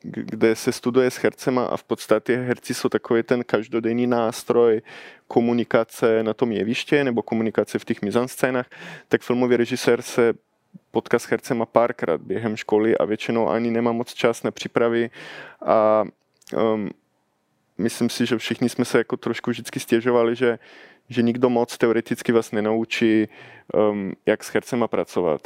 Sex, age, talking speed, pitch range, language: male, 20-39, 145 wpm, 115-125 Hz, Czech